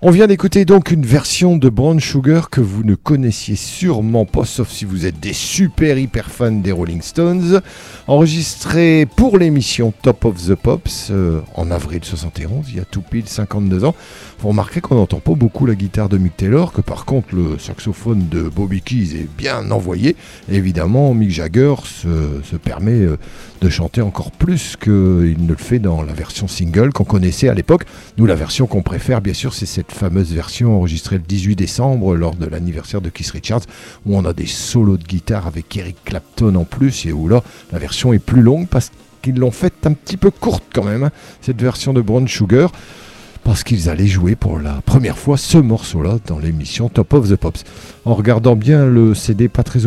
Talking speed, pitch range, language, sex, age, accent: 205 wpm, 95-130 Hz, English, male, 50-69, French